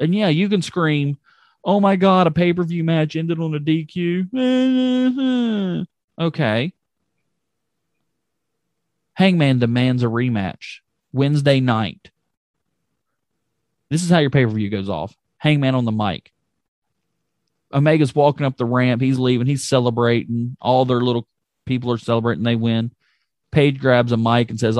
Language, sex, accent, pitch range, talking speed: English, male, American, 115-150 Hz, 135 wpm